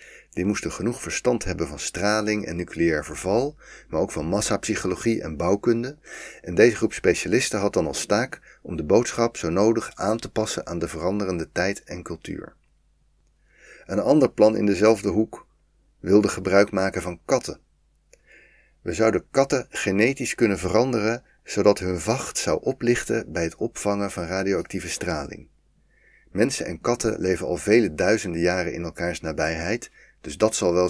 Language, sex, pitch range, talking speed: Dutch, male, 90-110 Hz, 155 wpm